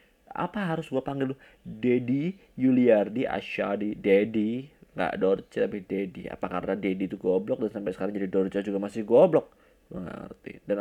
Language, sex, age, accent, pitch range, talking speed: Indonesian, male, 20-39, native, 95-120 Hz, 150 wpm